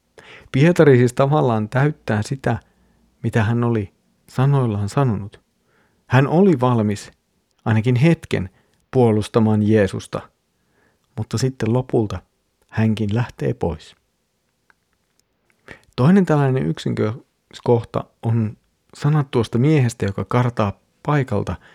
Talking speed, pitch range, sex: 90 wpm, 100-135 Hz, male